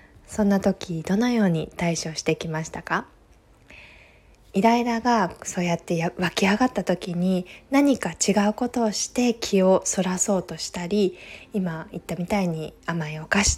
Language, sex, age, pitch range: Japanese, female, 20-39, 175-225 Hz